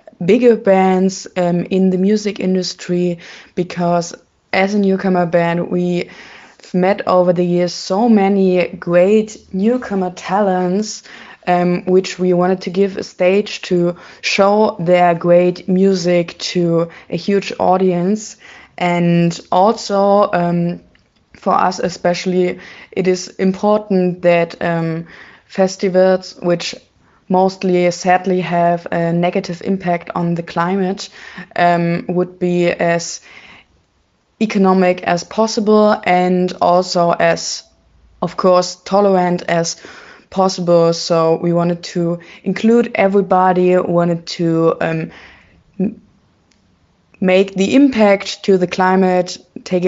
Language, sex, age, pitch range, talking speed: Hungarian, female, 20-39, 175-195 Hz, 110 wpm